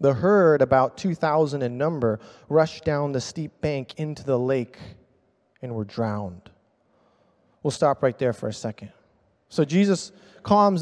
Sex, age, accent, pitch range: male, 20-39, American, 125-180 Hz